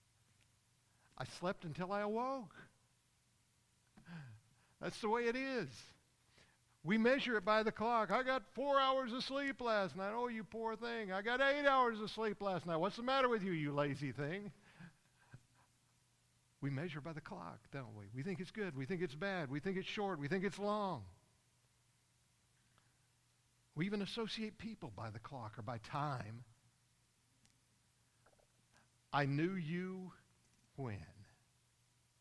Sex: male